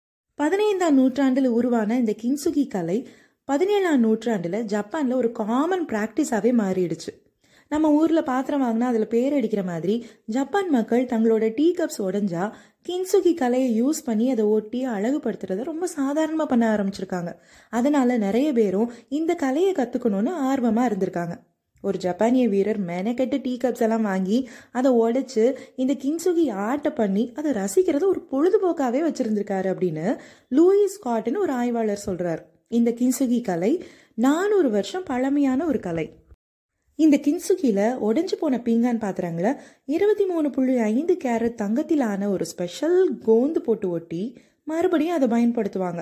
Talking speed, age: 100 wpm, 20-39